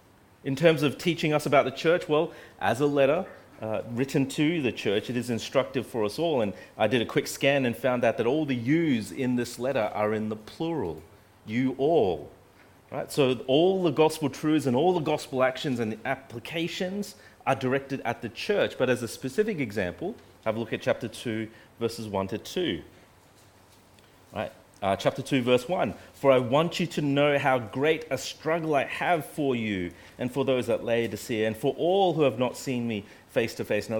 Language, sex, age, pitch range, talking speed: English, male, 30-49, 110-150 Hz, 210 wpm